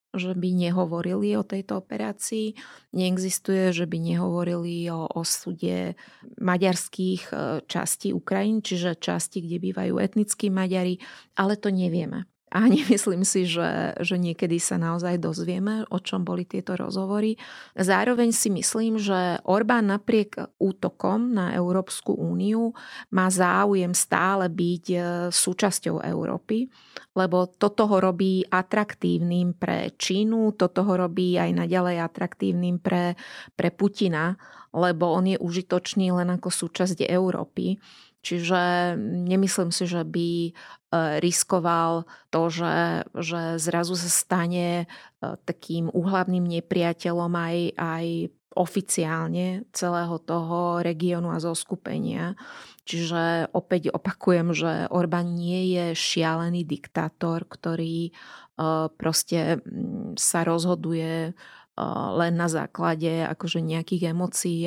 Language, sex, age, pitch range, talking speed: Slovak, female, 30-49, 170-190 Hz, 115 wpm